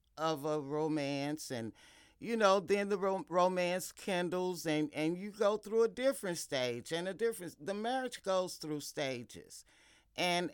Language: English